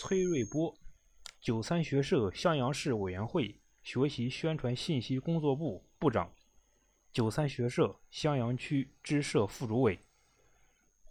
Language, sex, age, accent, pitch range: Chinese, male, 20-39, native, 110-155 Hz